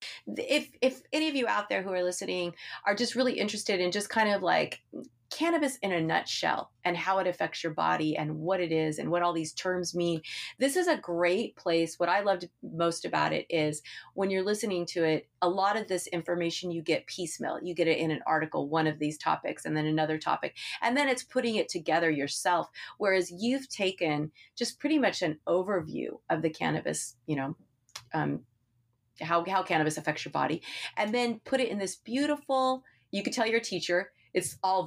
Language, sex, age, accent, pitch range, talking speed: English, female, 30-49, American, 165-210 Hz, 205 wpm